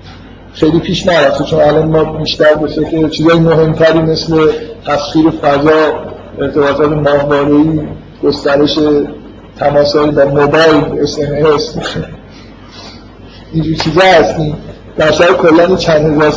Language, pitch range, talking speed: Persian, 150-175 Hz, 115 wpm